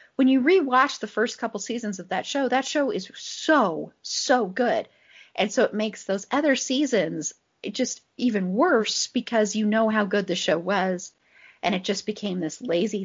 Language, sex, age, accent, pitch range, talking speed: English, female, 30-49, American, 175-245 Hz, 185 wpm